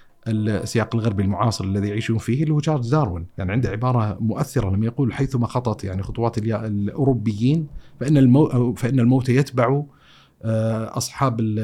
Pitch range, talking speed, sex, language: 105-135 Hz, 130 wpm, male, Arabic